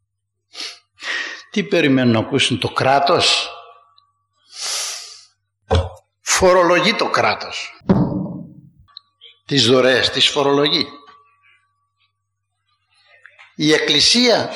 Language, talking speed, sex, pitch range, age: Greek, 60 wpm, male, 105-170 Hz, 60-79